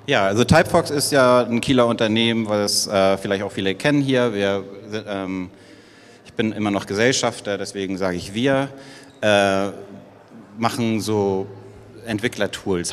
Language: German